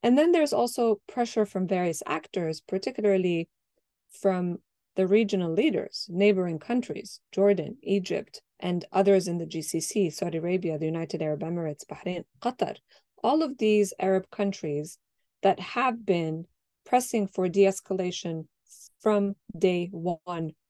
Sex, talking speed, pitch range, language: female, 130 wpm, 165-205 Hz, English